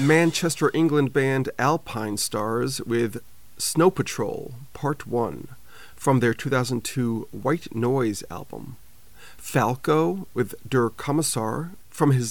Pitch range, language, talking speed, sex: 115-140 Hz, English, 105 wpm, male